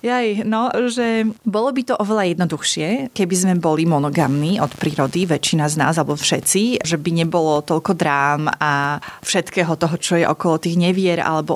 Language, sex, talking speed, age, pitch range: Slovak, female, 170 wpm, 30-49, 170-205 Hz